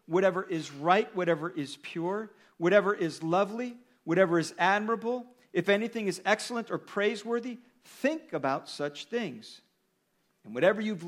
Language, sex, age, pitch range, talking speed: English, male, 50-69, 155-215 Hz, 135 wpm